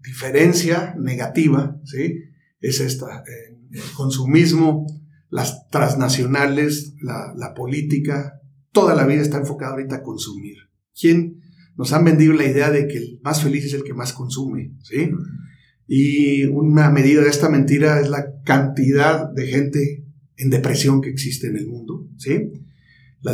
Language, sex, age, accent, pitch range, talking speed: Spanish, male, 50-69, Mexican, 135-150 Hz, 150 wpm